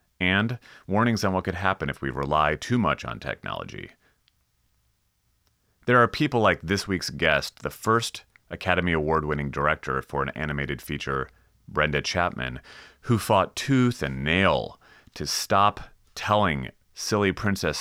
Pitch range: 70-100 Hz